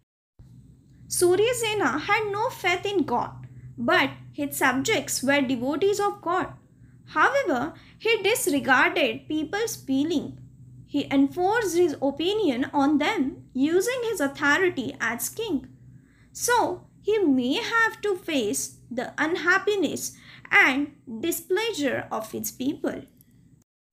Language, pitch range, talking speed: Hindi, 265-380 Hz, 110 wpm